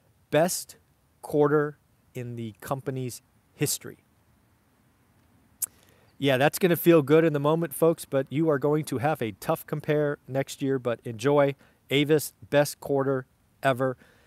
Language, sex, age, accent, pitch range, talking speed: English, male, 40-59, American, 125-155 Hz, 140 wpm